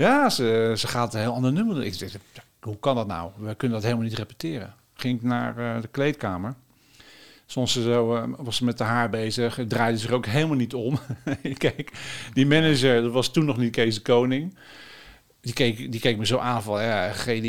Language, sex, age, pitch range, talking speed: Dutch, male, 50-69, 115-145 Hz, 220 wpm